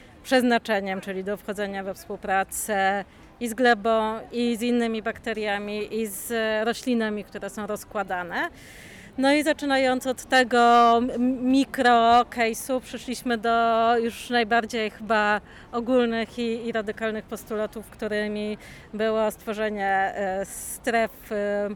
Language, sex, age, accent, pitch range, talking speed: Polish, female, 30-49, native, 205-235 Hz, 110 wpm